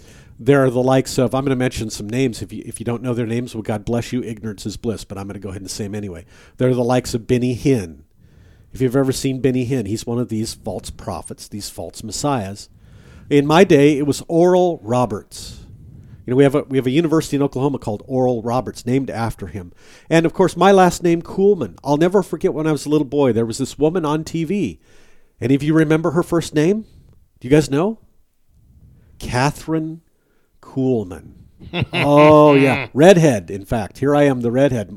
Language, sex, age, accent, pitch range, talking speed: English, male, 50-69, American, 115-155 Hz, 215 wpm